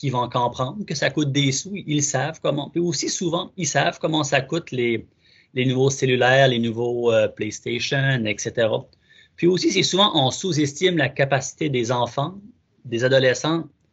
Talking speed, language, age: 170 wpm, French, 30-49